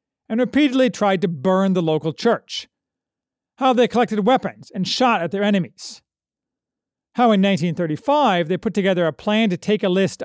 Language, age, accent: English, 40-59, American